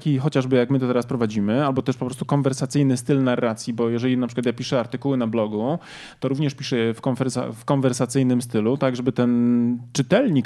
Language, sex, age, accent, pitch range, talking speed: Polish, male, 20-39, native, 125-160 Hz, 200 wpm